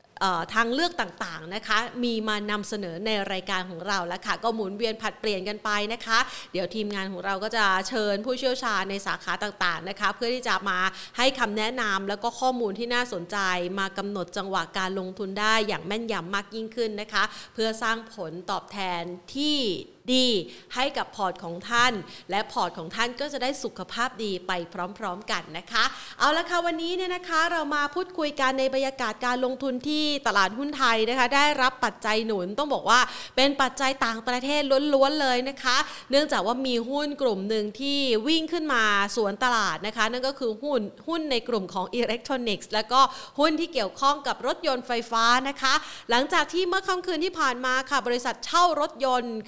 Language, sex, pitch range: Thai, female, 200-265 Hz